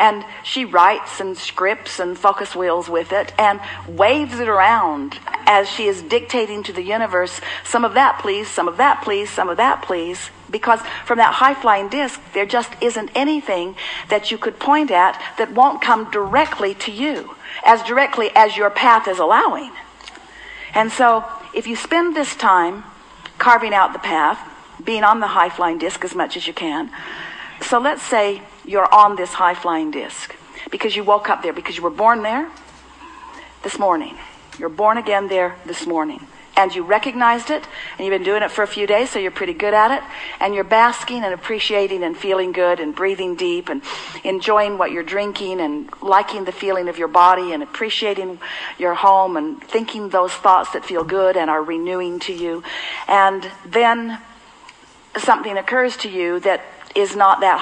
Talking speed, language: 180 wpm, English